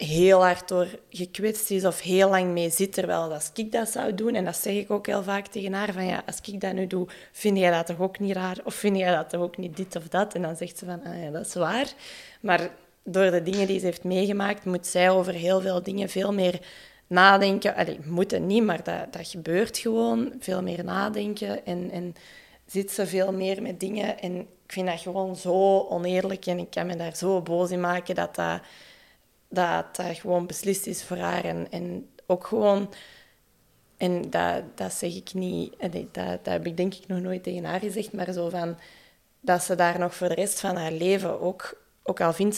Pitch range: 175-195 Hz